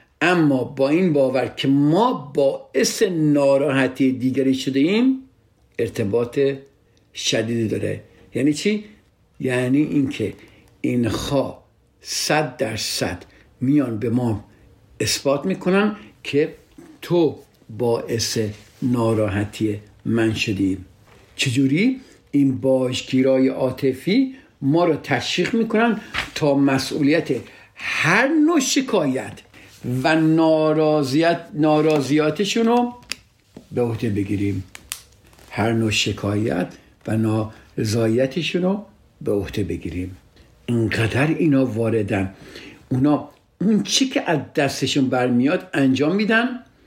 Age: 60-79